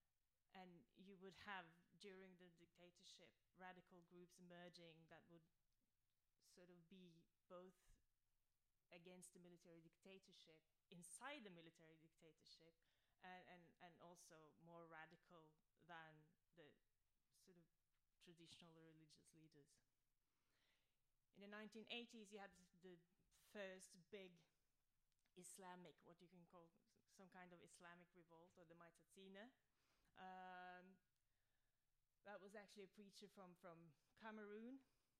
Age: 30-49